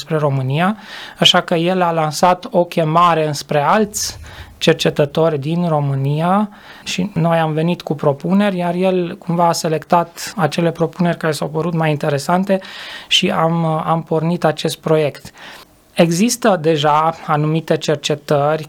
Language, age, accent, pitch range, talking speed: Romanian, 20-39, native, 150-180 Hz, 130 wpm